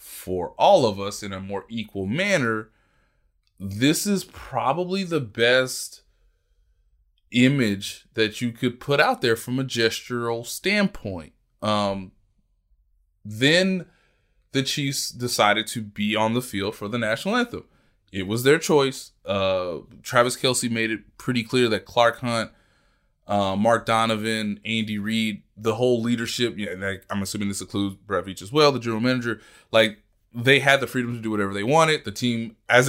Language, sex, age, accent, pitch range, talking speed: English, male, 20-39, American, 100-125 Hz, 160 wpm